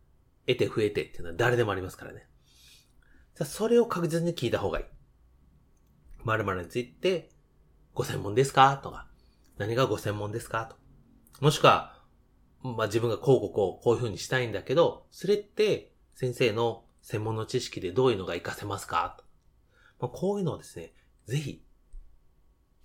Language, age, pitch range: Japanese, 30-49, 95-160 Hz